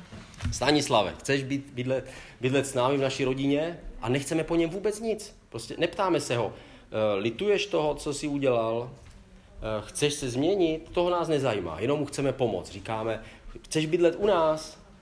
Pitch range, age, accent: 110-145 Hz, 40-59, native